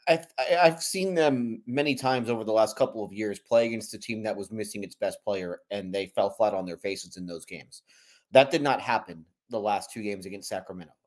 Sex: male